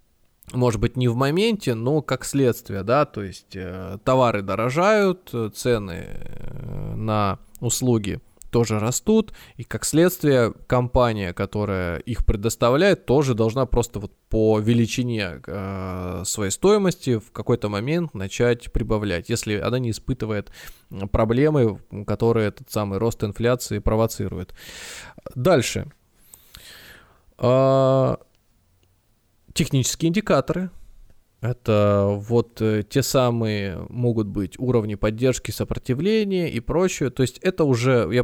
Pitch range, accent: 105-135 Hz, native